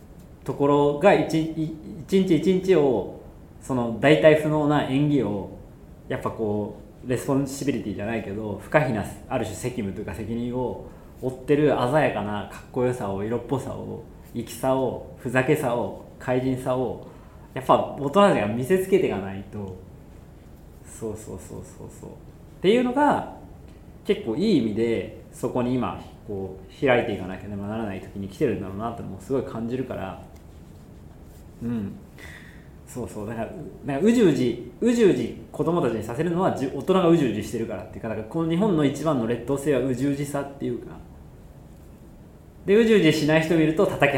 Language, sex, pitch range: Japanese, male, 105-150 Hz